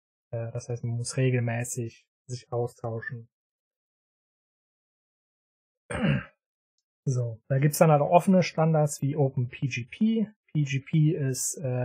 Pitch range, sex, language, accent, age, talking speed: 120-150 Hz, male, German, German, 30-49, 100 wpm